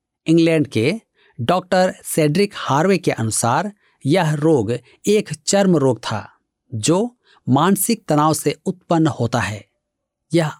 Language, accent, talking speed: Hindi, native, 120 wpm